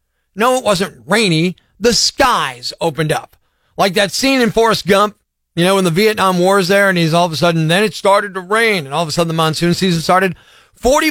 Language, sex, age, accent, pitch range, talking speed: English, male, 40-59, American, 170-240 Hz, 230 wpm